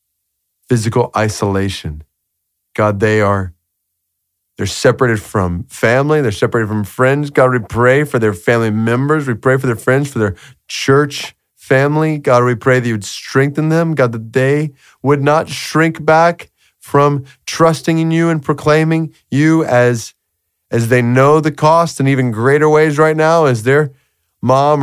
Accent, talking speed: American, 160 wpm